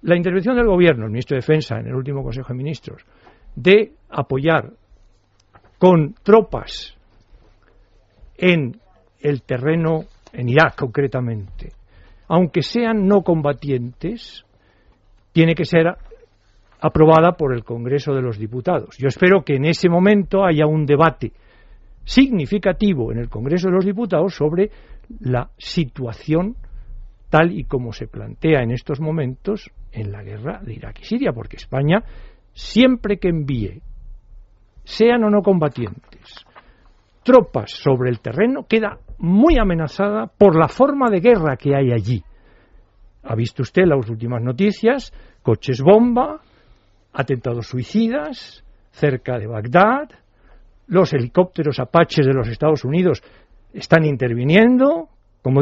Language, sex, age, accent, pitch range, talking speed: Spanish, male, 60-79, Spanish, 120-190 Hz, 130 wpm